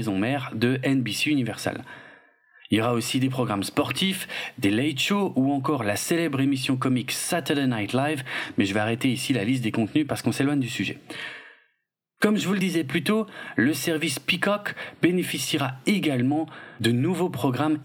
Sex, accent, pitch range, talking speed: male, French, 120-165 Hz, 175 wpm